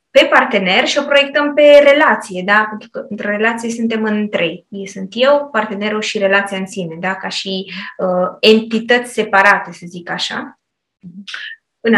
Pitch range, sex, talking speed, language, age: 200-260 Hz, female, 165 wpm, Romanian, 20-39